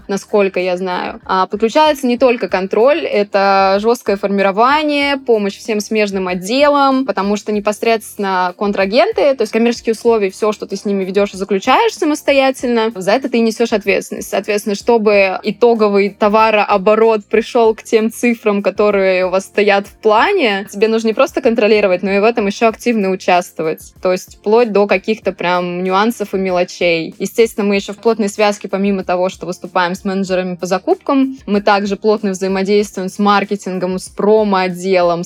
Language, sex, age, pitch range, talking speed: Russian, female, 20-39, 190-225 Hz, 160 wpm